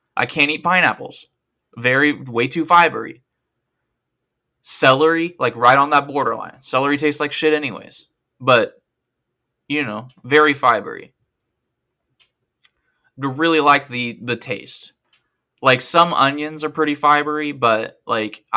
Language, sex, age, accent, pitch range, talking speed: English, male, 20-39, American, 125-155 Hz, 125 wpm